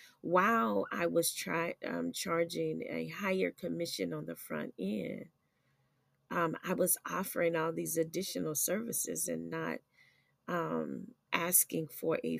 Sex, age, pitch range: female, 30-49, 130-180 Hz